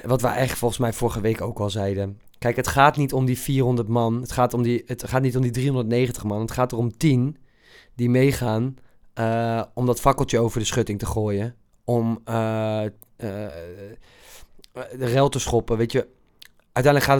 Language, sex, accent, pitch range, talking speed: Dutch, male, Dutch, 115-140 Hz, 195 wpm